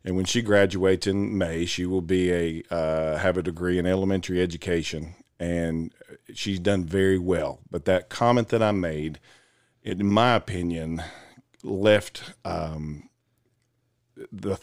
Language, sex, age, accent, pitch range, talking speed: English, male, 50-69, American, 85-110 Hz, 145 wpm